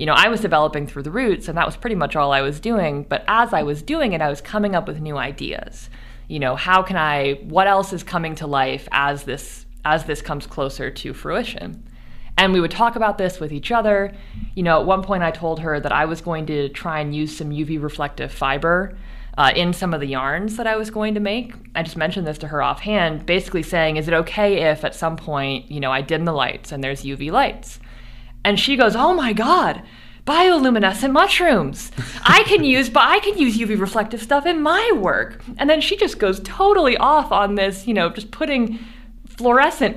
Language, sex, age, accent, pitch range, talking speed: English, female, 20-39, American, 150-225 Hz, 225 wpm